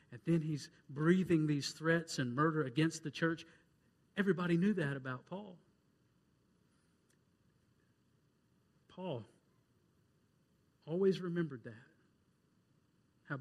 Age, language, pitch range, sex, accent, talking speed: 50-69, Finnish, 130-165 Hz, male, American, 95 wpm